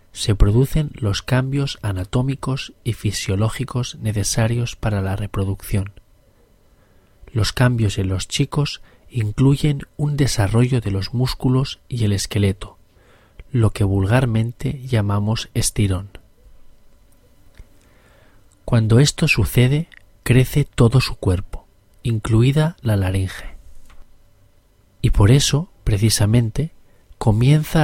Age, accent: 40-59, Spanish